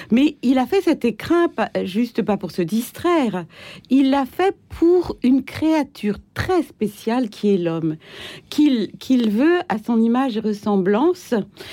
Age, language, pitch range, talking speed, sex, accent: 60-79, French, 205-300 Hz, 155 wpm, female, French